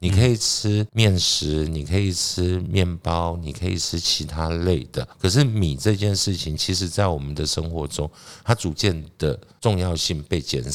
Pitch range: 80-110 Hz